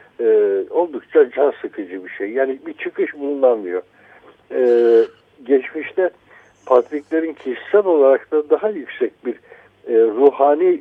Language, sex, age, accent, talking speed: Turkish, male, 60-79, native, 115 wpm